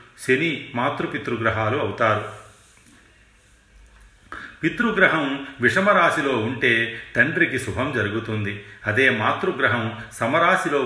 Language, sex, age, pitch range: Telugu, male, 40-59, 110-130 Hz